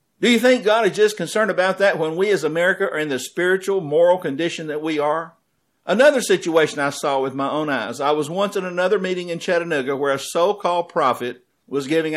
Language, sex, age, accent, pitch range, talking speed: English, male, 60-79, American, 135-180 Hz, 215 wpm